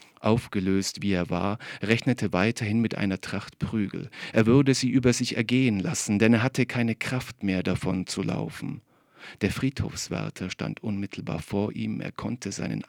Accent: German